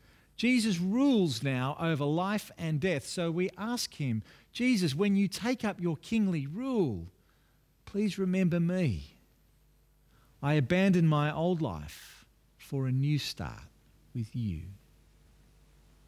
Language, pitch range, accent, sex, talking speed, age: English, 110-170 Hz, Australian, male, 125 wpm, 50-69